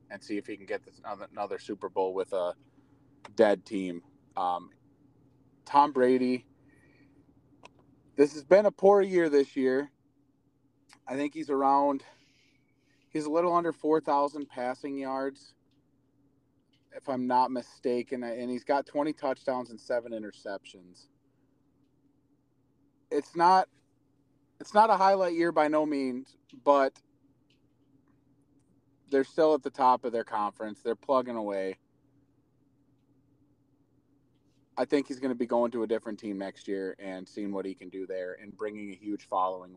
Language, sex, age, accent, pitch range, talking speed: English, male, 30-49, American, 115-140 Hz, 145 wpm